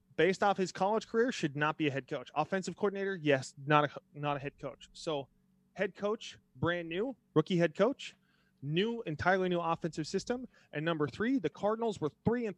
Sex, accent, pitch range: male, American, 150-195 Hz